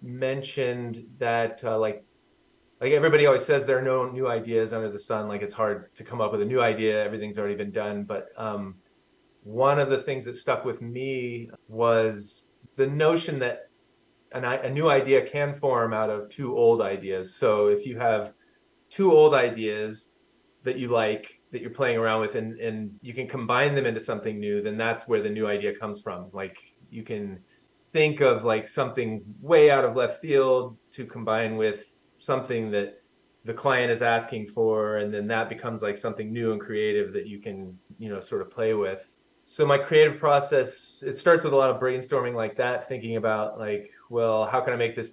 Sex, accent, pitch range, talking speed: male, American, 105-135 Hz, 200 wpm